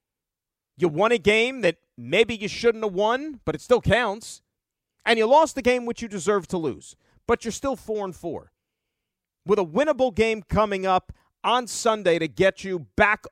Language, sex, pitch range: English, male, 150-205 Hz